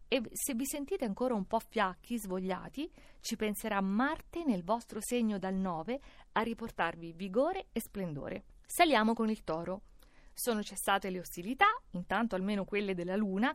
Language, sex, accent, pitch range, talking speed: Italian, female, native, 195-255 Hz, 155 wpm